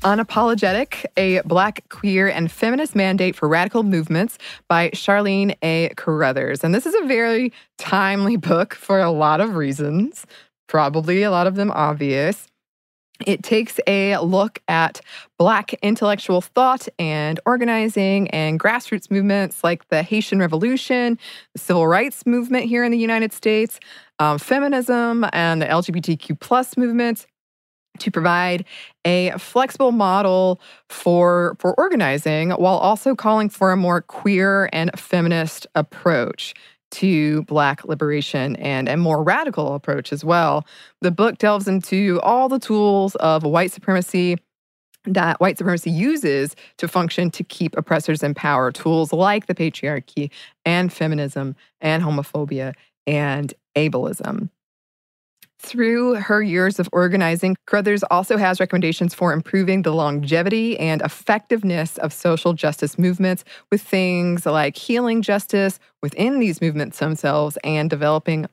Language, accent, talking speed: English, American, 135 wpm